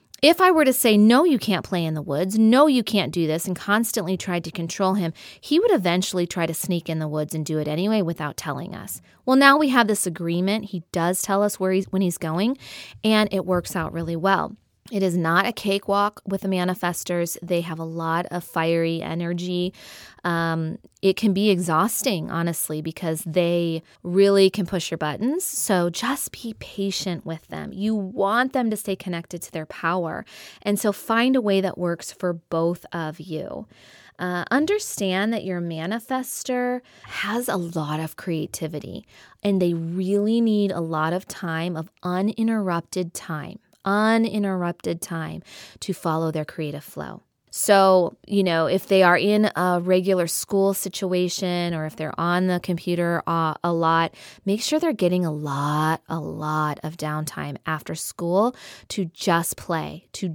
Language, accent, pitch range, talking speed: English, American, 165-205 Hz, 175 wpm